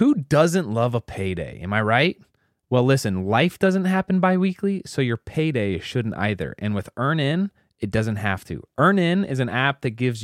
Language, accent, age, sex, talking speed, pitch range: English, American, 20-39, male, 200 wpm, 105-135 Hz